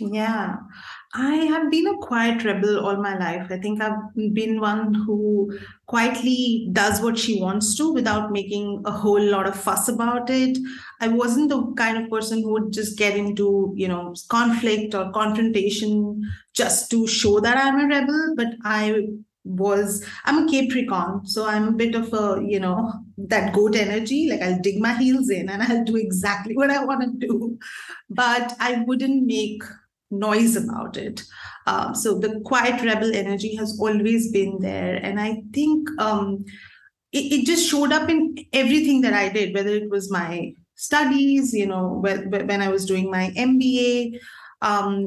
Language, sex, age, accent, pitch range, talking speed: English, female, 30-49, Indian, 205-245 Hz, 175 wpm